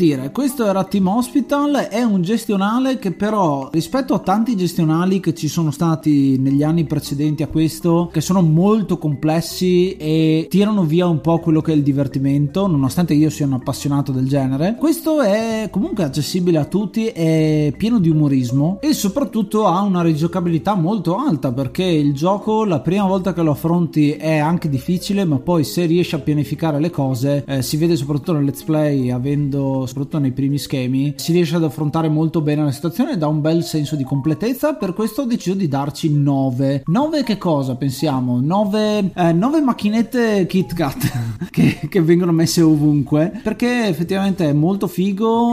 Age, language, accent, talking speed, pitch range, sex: 30-49, Italian, native, 175 wpm, 145-185 Hz, male